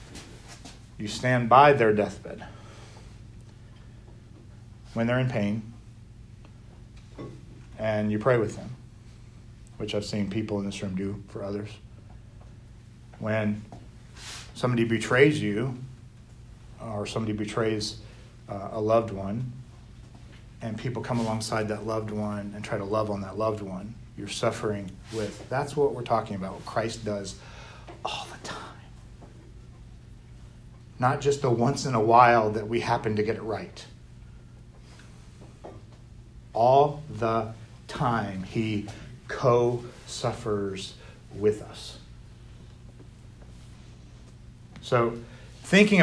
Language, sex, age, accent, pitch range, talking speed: English, male, 40-59, American, 110-125 Hz, 115 wpm